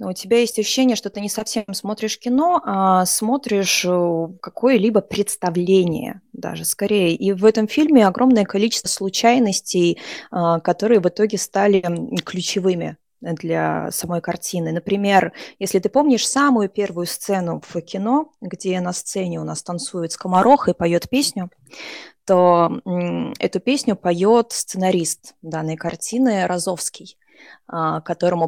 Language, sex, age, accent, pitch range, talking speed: Russian, female, 20-39, native, 175-210 Hz, 125 wpm